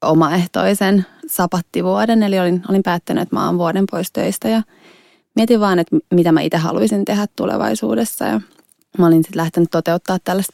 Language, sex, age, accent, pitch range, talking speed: Finnish, female, 20-39, native, 170-205 Hz, 165 wpm